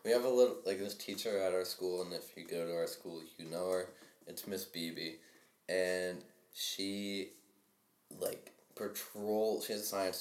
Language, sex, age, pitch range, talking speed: English, male, 20-39, 90-100 Hz, 175 wpm